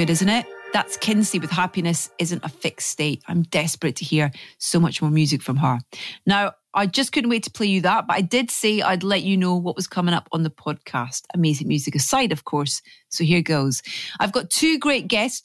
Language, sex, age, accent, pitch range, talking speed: English, female, 30-49, British, 155-210 Hz, 220 wpm